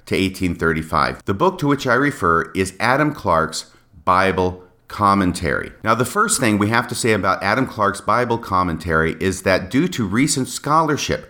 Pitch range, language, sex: 90-130 Hz, English, male